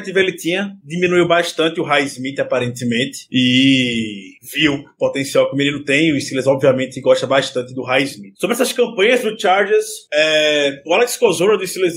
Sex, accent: male, Brazilian